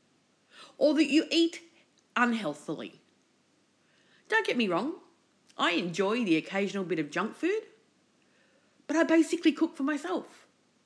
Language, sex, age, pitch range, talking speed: English, female, 40-59, 195-285 Hz, 125 wpm